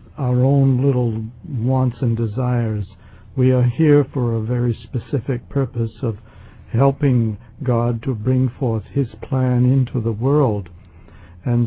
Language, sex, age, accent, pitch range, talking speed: English, male, 60-79, American, 110-130 Hz, 135 wpm